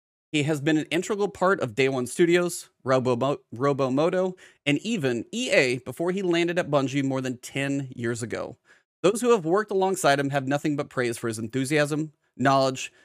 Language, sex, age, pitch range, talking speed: English, male, 30-49, 135-180 Hz, 185 wpm